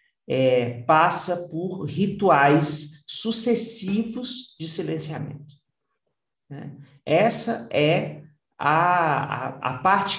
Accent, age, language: Brazilian, 40-59, Portuguese